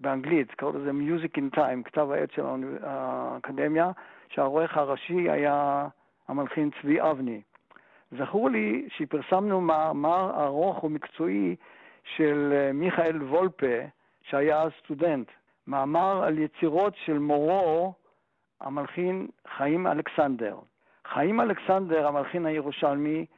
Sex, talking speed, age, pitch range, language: male, 100 wpm, 60-79, 145-180 Hz, Hebrew